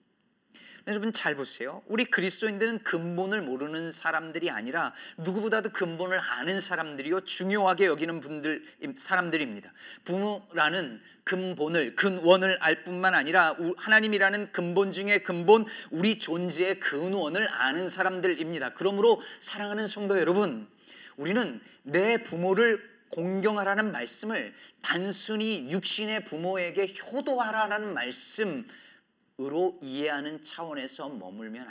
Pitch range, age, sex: 175-220 Hz, 30-49, male